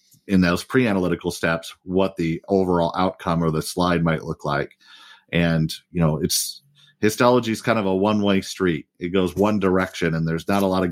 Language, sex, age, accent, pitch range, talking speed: English, male, 40-59, American, 85-95 Hz, 190 wpm